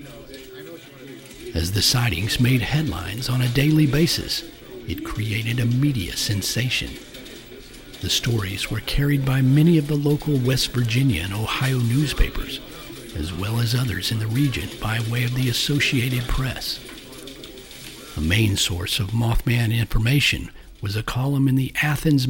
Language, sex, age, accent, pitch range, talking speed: English, male, 60-79, American, 110-135 Hz, 145 wpm